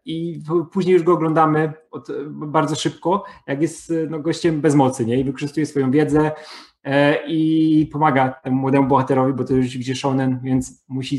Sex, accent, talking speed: male, native, 145 wpm